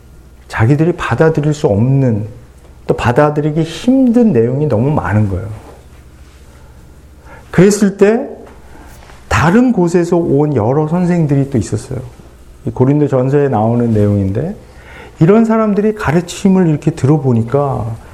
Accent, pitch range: native, 110-170 Hz